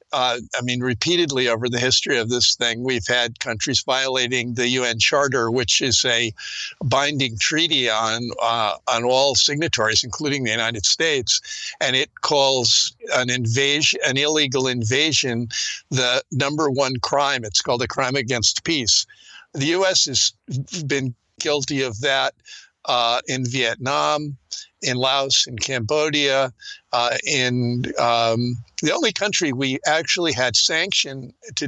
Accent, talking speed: American, 140 wpm